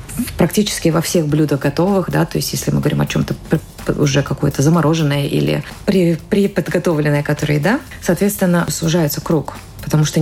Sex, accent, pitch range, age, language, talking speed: female, native, 150-175 Hz, 30-49, Russian, 155 wpm